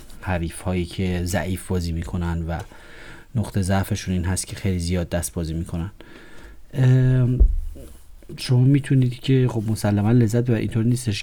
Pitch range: 95-115 Hz